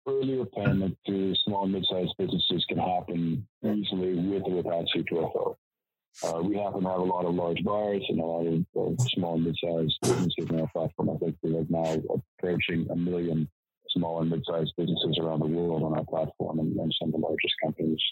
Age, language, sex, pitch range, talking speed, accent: 40-59, English, male, 85-110 Hz, 210 wpm, American